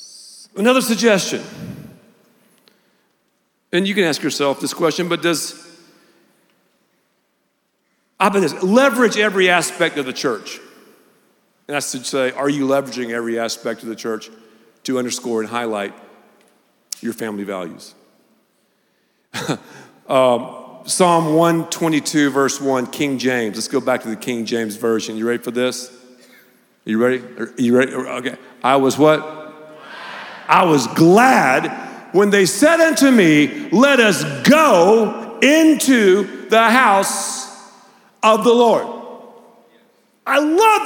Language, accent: English, American